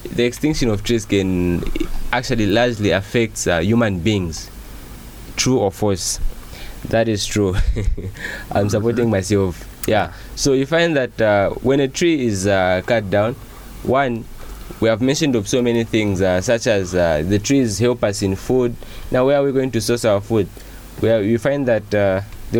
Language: English